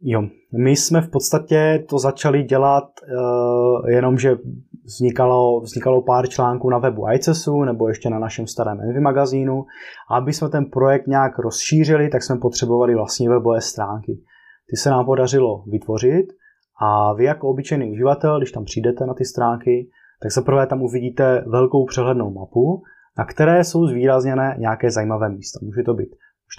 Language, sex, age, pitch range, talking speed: Slovak, male, 20-39, 115-135 Hz, 165 wpm